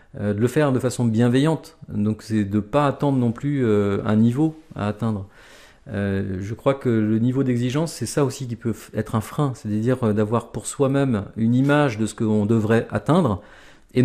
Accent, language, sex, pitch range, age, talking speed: French, French, male, 110-135 Hz, 40-59, 200 wpm